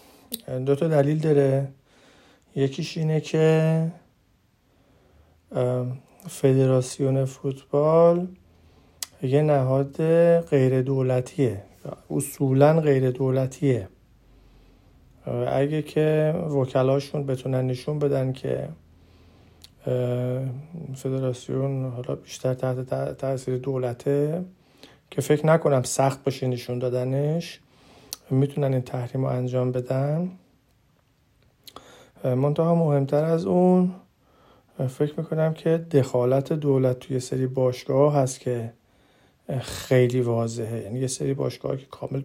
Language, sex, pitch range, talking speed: Persian, male, 125-145 Hz, 90 wpm